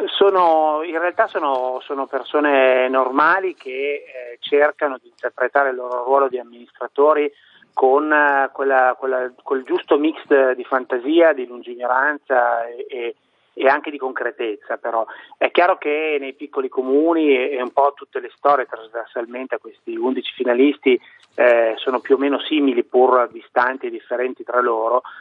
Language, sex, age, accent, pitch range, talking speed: Italian, male, 30-49, native, 125-190 Hz, 150 wpm